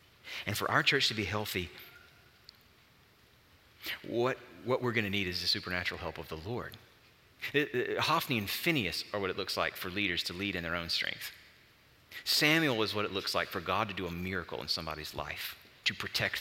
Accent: American